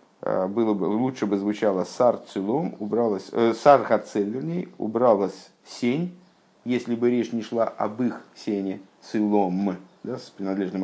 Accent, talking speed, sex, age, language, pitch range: native, 135 wpm, male, 50-69, Russian, 95-120 Hz